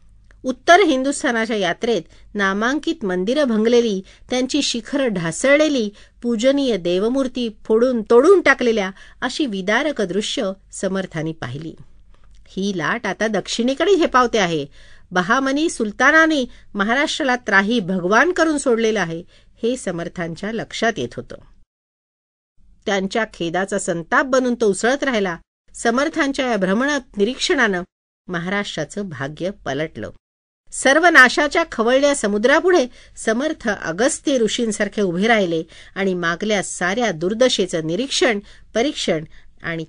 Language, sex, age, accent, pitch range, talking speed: Marathi, female, 50-69, native, 185-260 Hz, 105 wpm